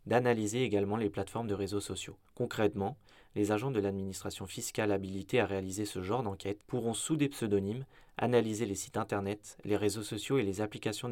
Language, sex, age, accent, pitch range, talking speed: French, male, 20-39, French, 100-120 Hz, 180 wpm